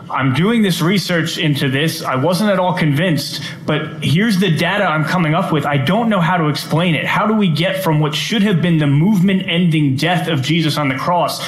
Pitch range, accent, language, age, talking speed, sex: 140-170 Hz, American, English, 20-39, 225 wpm, male